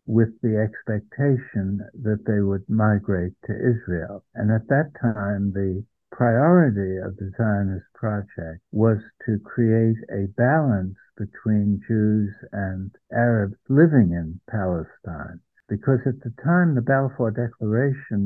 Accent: American